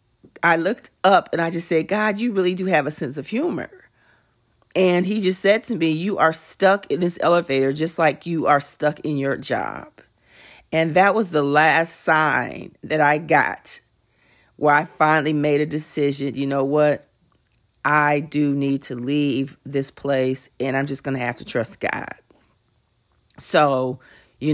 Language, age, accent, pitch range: English, 40-59, American, 140-165 Hz